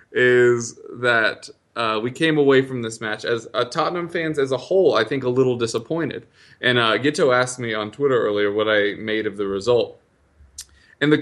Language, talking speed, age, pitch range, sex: English, 200 wpm, 20-39, 110-150 Hz, male